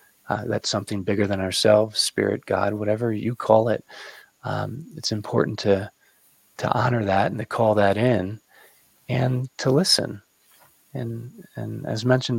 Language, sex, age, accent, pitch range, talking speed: English, male, 30-49, American, 100-115 Hz, 145 wpm